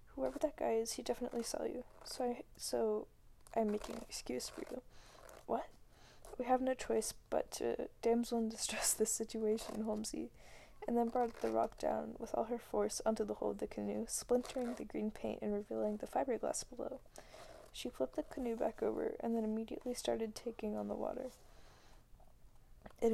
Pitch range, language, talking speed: 215-250 Hz, English, 180 wpm